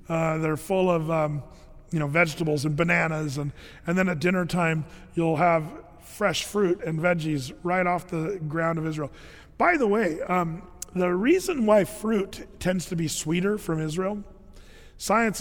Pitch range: 160-195 Hz